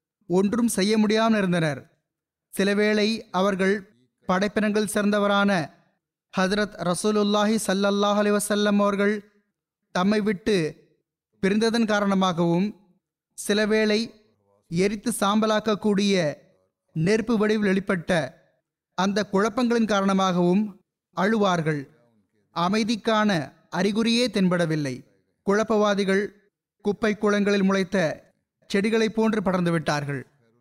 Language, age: Tamil, 30-49